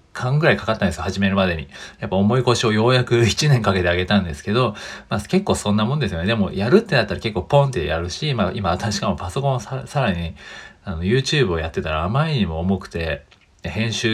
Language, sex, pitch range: Japanese, male, 90-115 Hz